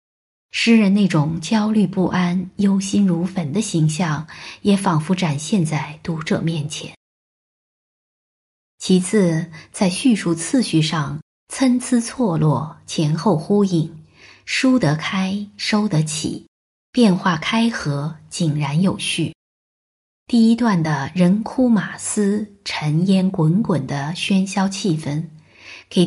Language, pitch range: Chinese, 155-205 Hz